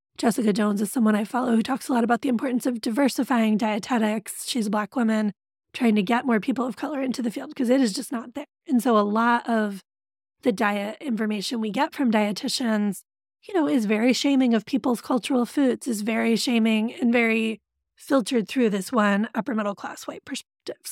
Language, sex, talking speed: English, female, 205 wpm